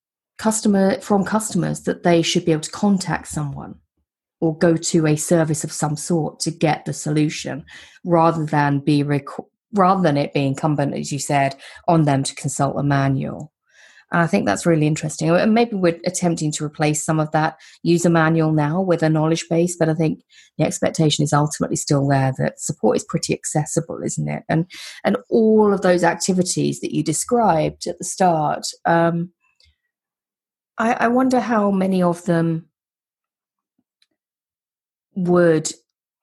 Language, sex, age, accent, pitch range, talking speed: English, female, 30-49, British, 145-175 Hz, 160 wpm